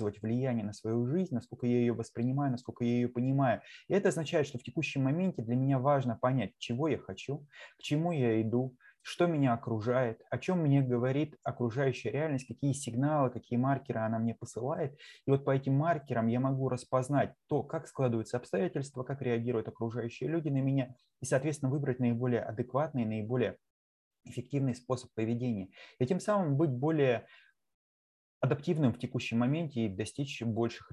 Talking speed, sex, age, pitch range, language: 165 wpm, male, 20-39, 115-140 Hz, Russian